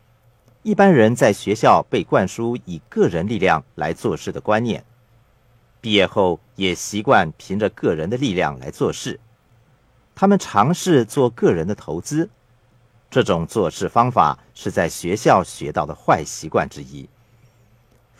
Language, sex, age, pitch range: Chinese, male, 50-69, 105-130 Hz